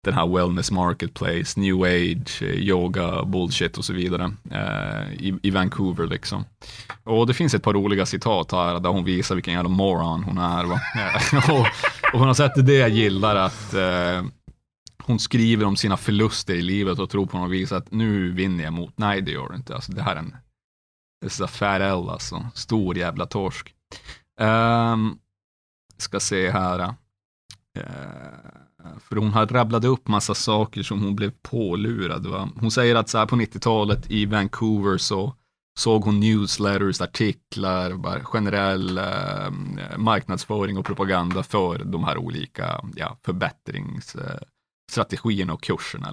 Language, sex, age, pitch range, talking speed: Swedish, male, 30-49, 90-115 Hz, 155 wpm